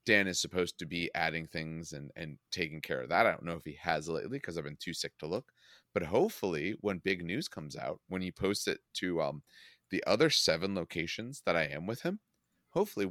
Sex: male